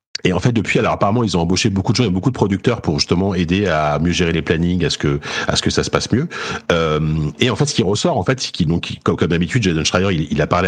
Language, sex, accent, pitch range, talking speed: French, male, French, 75-100 Hz, 305 wpm